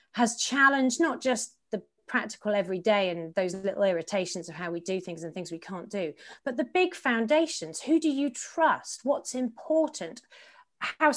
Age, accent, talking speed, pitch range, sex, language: 30-49, British, 175 wpm, 185-250 Hz, female, English